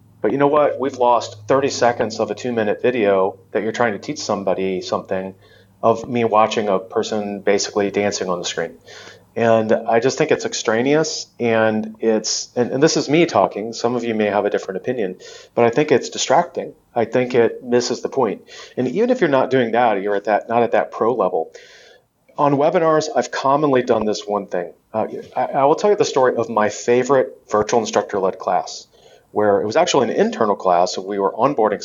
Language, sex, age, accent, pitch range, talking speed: English, male, 30-49, American, 105-130 Hz, 205 wpm